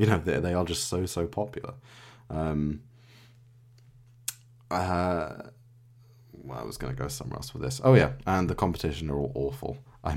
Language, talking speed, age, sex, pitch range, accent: English, 170 wpm, 20-39, male, 75-120 Hz, British